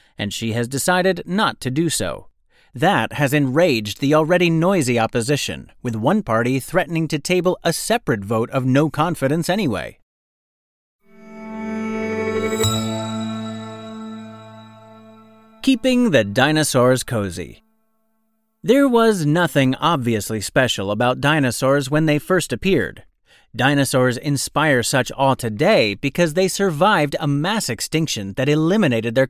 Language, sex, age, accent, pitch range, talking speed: English, male, 30-49, American, 115-185 Hz, 115 wpm